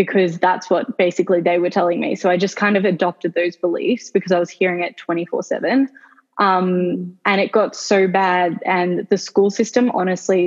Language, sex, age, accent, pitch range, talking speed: English, female, 10-29, Australian, 180-200 Hz, 195 wpm